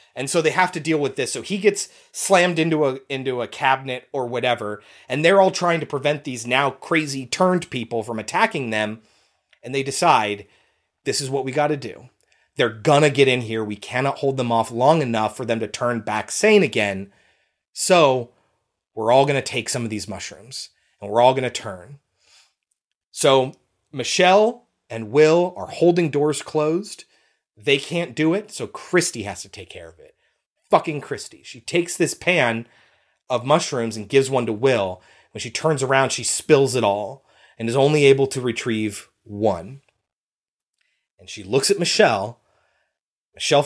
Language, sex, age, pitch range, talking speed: English, male, 30-49, 115-170 Hz, 185 wpm